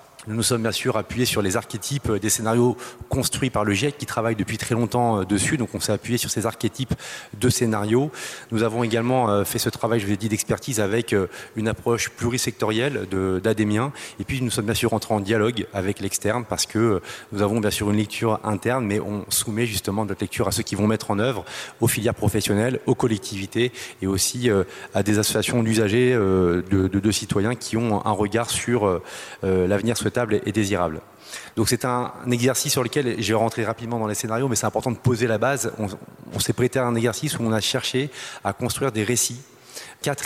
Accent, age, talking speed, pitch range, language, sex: French, 30-49, 205 wpm, 105-120 Hz, French, male